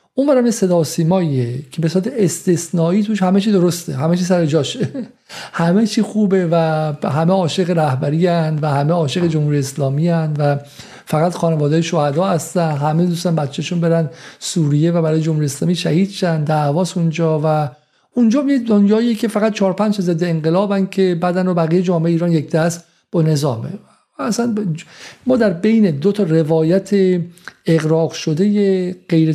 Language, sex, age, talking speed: Persian, male, 50-69, 155 wpm